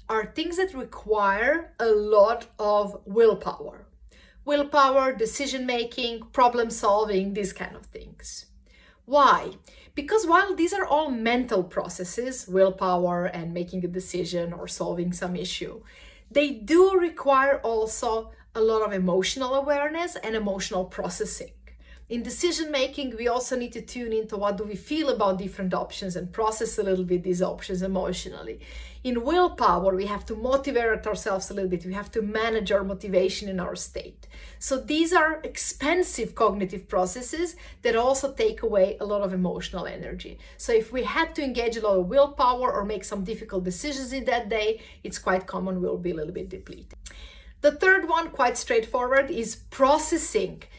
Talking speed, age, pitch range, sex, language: 160 wpm, 40-59, 190-265 Hz, female, English